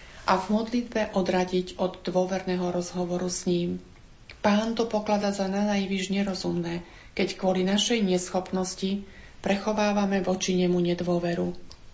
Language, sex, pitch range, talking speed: Slovak, female, 180-205 Hz, 115 wpm